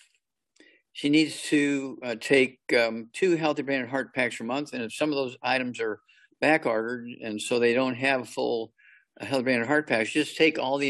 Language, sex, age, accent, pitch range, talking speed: English, male, 50-69, American, 115-140 Hz, 215 wpm